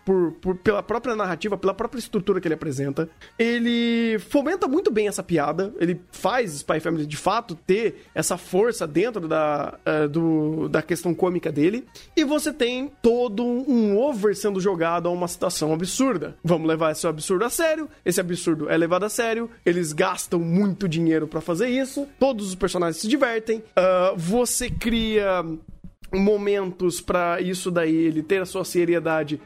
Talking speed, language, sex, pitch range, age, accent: 155 wpm, Portuguese, male, 170-230 Hz, 20-39, Brazilian